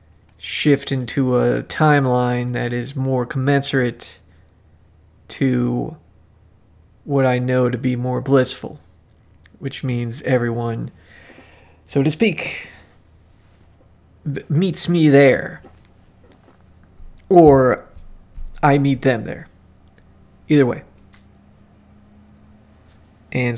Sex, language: male, English